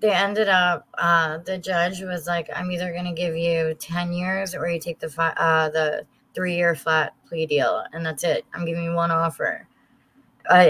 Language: English